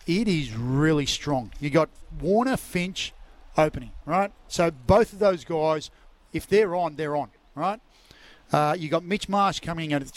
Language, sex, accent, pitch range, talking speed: English, male, Australian, 150-185 Hz, 175 wpm